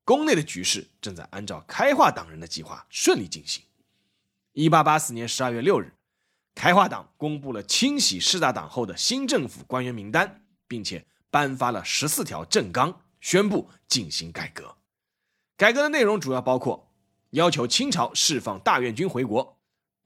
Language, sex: Chinese, male